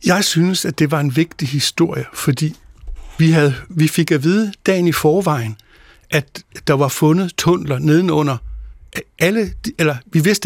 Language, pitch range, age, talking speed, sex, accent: Danish, 150-175 Hz, 60-79, 160 wpm, male, native